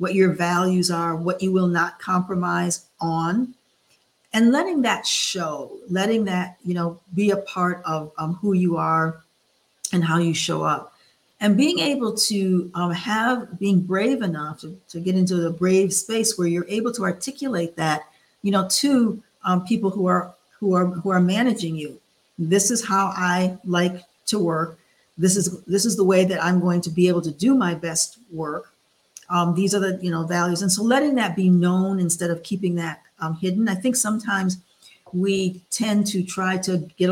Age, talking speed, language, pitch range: 50-69, 190 wpm, English, 175-205 Hz